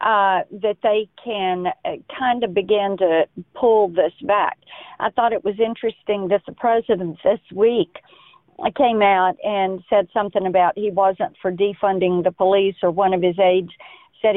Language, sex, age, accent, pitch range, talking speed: English, female, 50-69, American, 185-220 Hz, 165 wpm